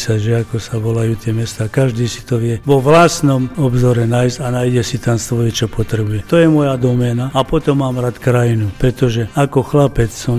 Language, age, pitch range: Slovak, 50-69, 120-135 Hz